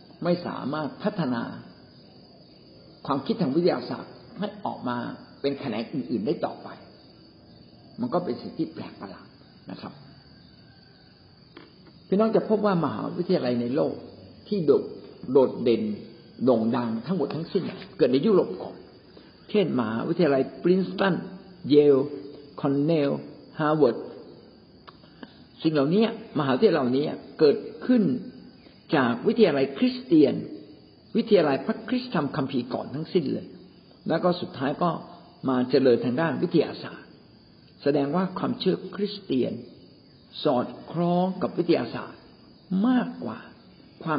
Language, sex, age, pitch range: Thai, male, 60-79, 145-210 Hz